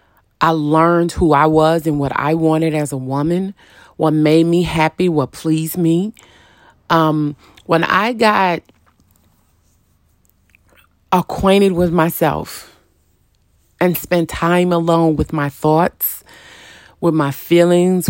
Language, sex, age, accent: English, female, 30-49, American